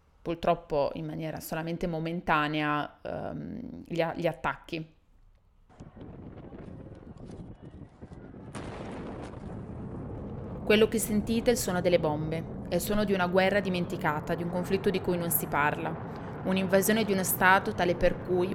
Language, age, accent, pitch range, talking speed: Italian, 20-39, native, 160-185 Hz, 125 wpm